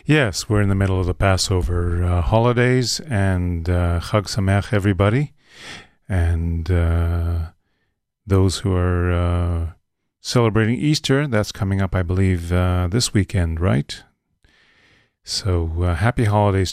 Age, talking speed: 40-59, 130 wpm